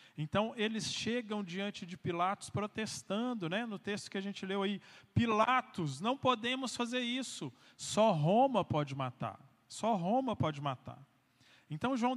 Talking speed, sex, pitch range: 150 wpm, male, 135-190 Hz